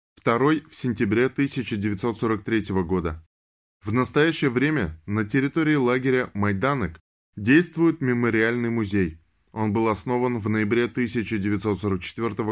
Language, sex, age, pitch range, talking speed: Russian, male, 10-29, 100-130 Hz, 100 wpm